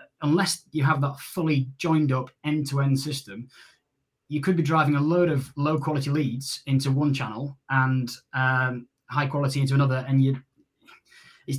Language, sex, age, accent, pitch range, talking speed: English, male, 20-39, British, 130-150 Hz, 170 wpm